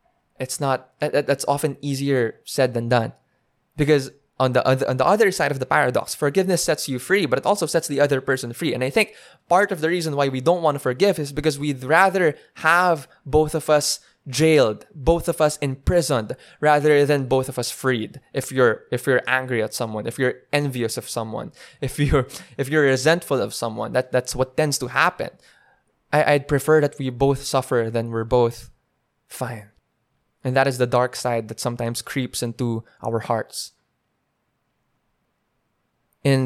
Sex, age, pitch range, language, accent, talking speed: male, 20-39, 125-145 Hz, English, Filipino, 185 wpm